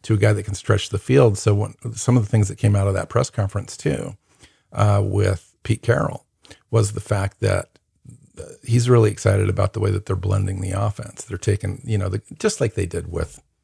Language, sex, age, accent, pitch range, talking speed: English, male, 50-69, American, 95-115 Hz, 225 wpm